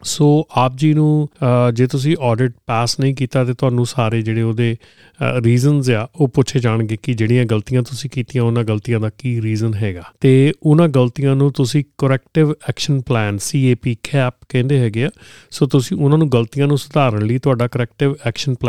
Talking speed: 155 wpm